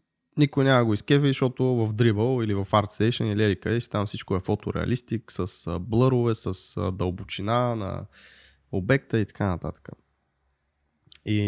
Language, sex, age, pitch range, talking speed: Bulgarian, male, 20-39, 100-120 Hz, 140 wpm